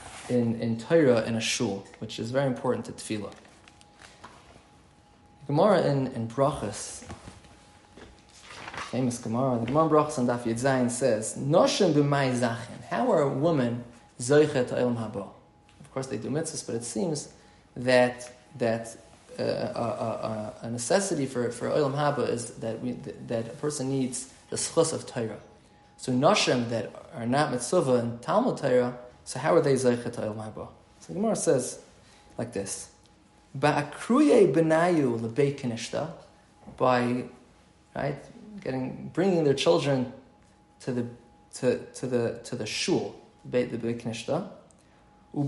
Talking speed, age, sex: 125 wpm, 20-39, male